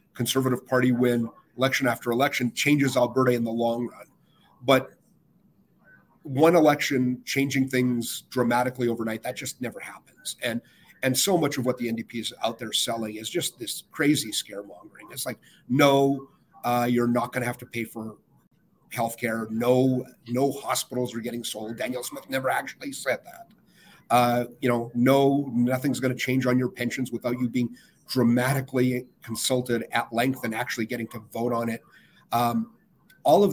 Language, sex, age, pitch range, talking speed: English, male, 40-59, 120-135 Hz, 165 wpm